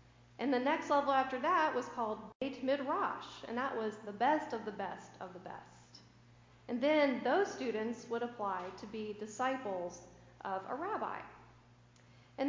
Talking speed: 165 wpm